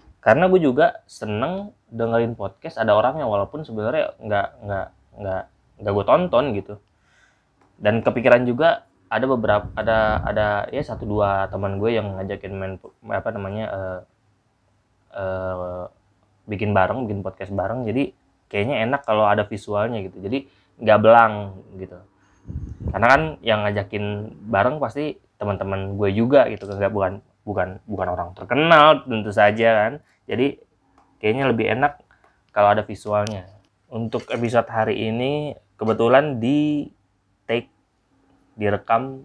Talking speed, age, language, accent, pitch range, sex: 130 wpm, 20-39, Indonesian, native, 100-120 Hz, male